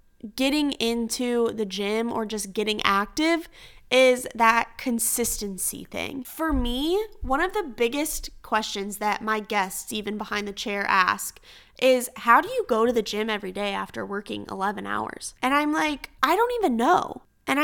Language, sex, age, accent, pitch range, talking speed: English, female, 20-39, American, 220-285 Hz, 165 wpm